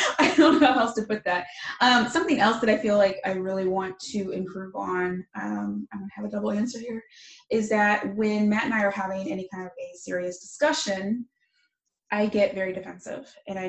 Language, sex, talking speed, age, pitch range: English, female, 210 wpm, 20-39, 180-220 Hz